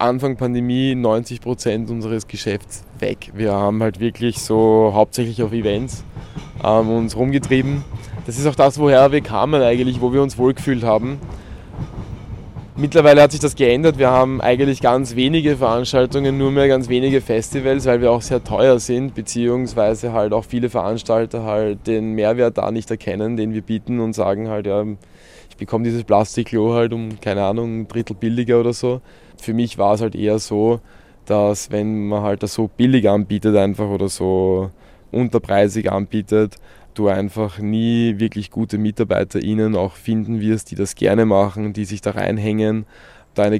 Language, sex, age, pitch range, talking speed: German, male, 20-39, 105-120 Hz, 165 wpm